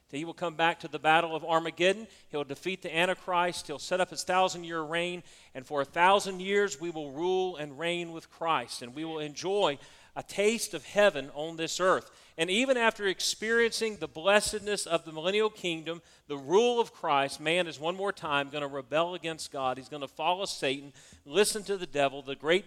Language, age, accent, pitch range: English, 40-59, American, 145-185 Hz